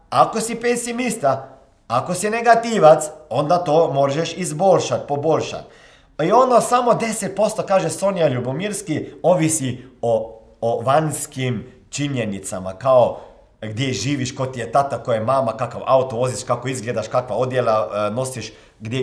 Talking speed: 130 wpm